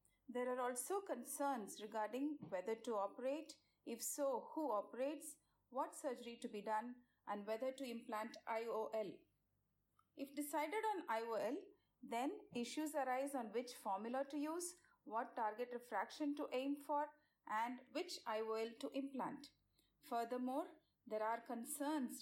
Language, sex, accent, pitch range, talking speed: English, female, Indian, 230-295 Hz, 130 wpm